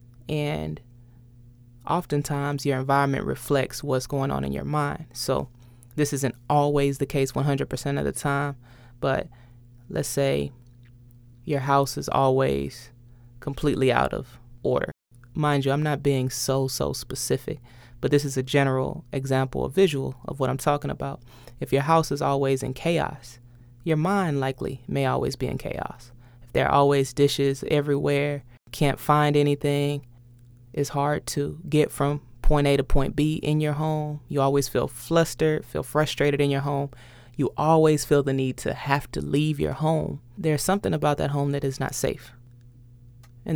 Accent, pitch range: American, 120-145 Hz